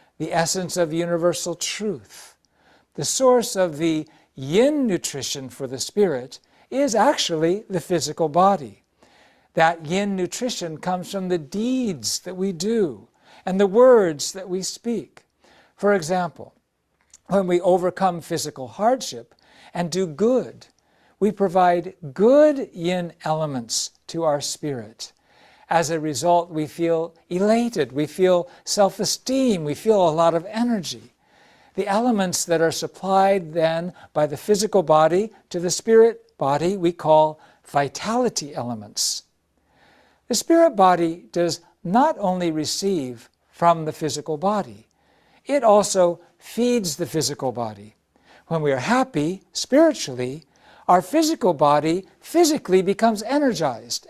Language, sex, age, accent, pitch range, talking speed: English, male, 60-79, American, 155-205 Hz, 125 wpm